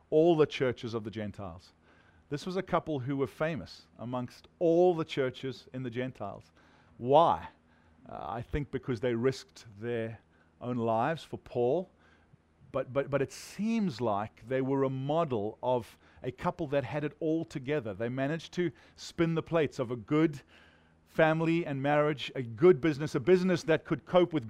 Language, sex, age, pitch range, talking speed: English, male, 40-59, 120-155 Hz, 175 wpm